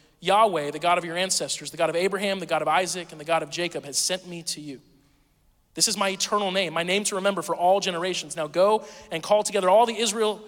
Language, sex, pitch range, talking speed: English, male, 165-215 Hz, 250 wpm